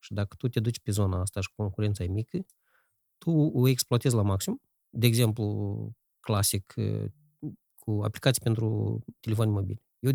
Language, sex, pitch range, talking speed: Romanian, male, 105-135 Hz, 155 wpm